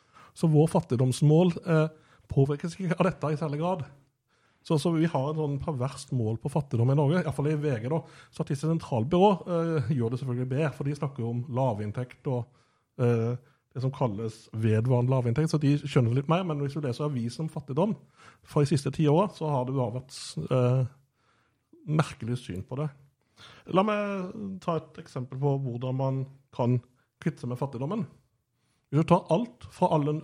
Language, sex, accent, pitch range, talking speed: English, male, Norwegian, 125-155 Hz, 185 wpm